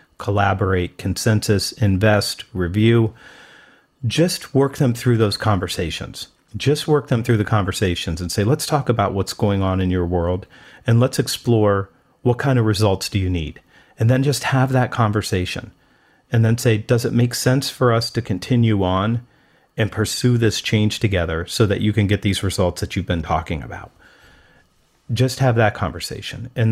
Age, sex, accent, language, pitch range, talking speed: 40-59, male, American, English, 95-120 Hz, 175 wpm